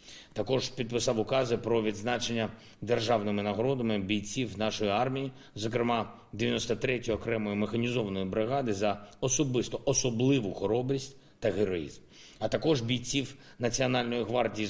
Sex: male